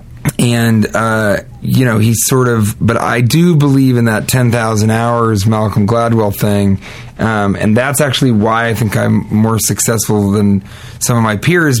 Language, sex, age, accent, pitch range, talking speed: English, male, 30-49, American, 105-120 Hz, 170 wpm